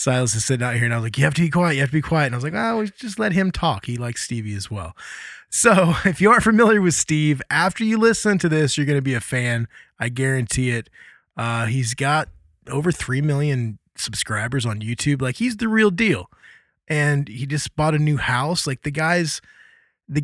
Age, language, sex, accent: 20-39, English, male, American